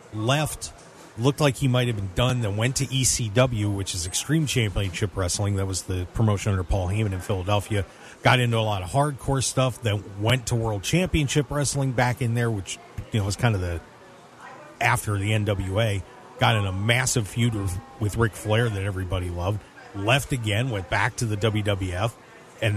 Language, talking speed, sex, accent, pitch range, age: English, 190 wpm, male, American, 105-135 Hz, 40-59